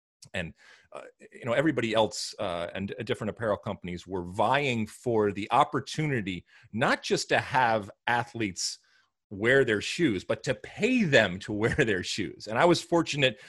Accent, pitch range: American, 100-125 Hz